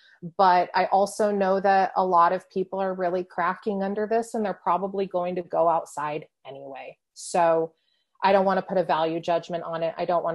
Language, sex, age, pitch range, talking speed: English, female, 30-49, 175-205 Hz, 210 wpm